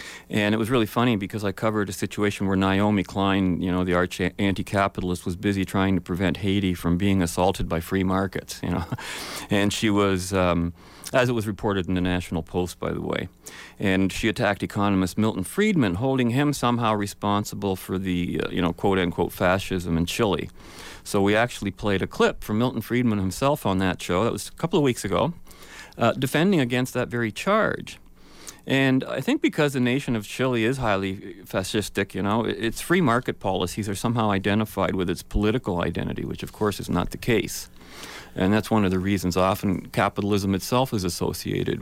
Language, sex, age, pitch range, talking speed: English, male, 40-59, 95-120 Hz, 190 wpm